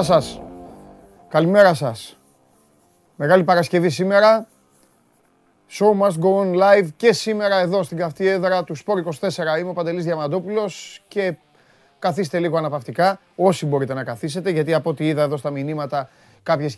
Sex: male